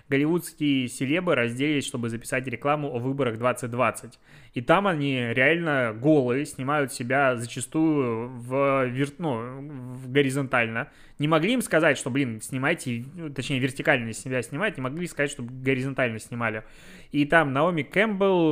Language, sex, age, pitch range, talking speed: Russian, male, 20-39, 130-160 Hz, 140 wpm